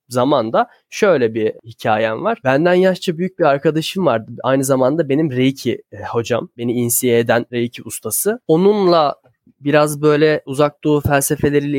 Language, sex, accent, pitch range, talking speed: Turkish, male, native, 120-145 Hz, 135 wpm